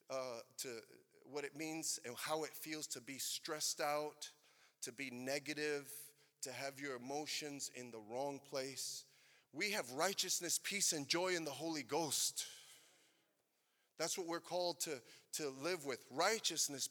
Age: 30-49